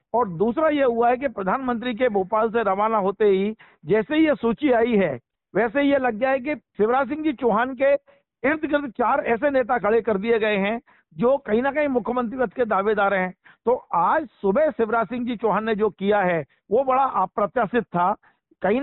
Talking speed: 205 wpm